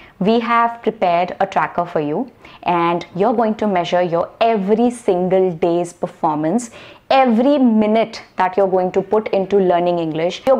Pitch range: 180-235 Hz